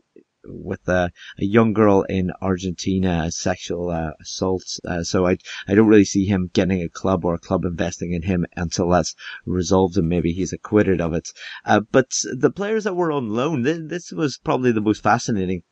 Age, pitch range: 30-49, 90-115 Hz